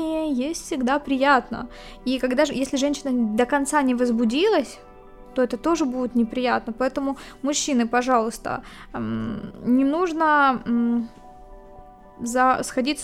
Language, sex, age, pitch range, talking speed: Ukrainian, female, 20-39, 240-280 Hz, 105 wpm